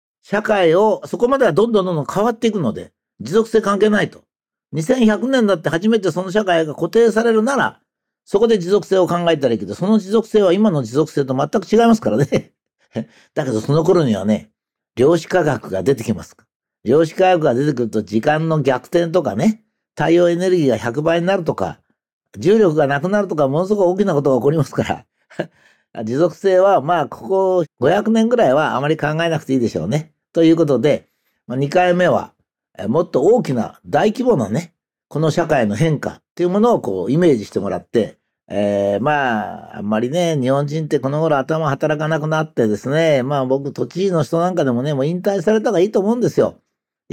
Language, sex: Japanese, male